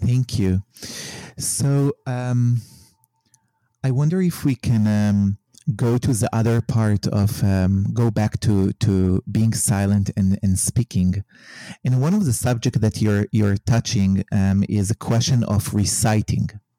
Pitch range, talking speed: 105-130 Hz, 145 wpm